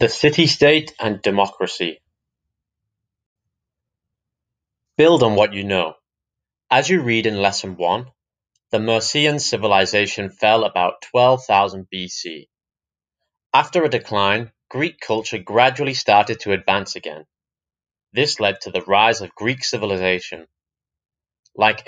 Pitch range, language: 95-125 Hz, English